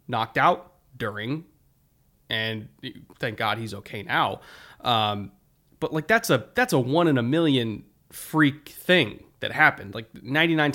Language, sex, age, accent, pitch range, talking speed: English, male, 20-39, American, 115-150 Hz, 145 wpm